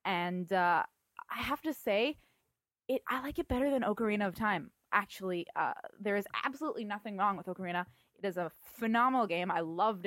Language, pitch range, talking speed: English, 175-210 Hz, 185 wpm